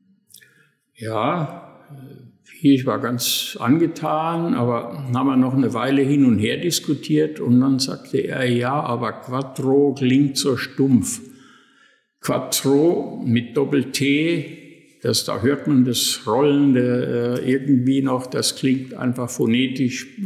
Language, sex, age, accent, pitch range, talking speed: German, male, 60-79, German, 125-150 Hz, 115 wpm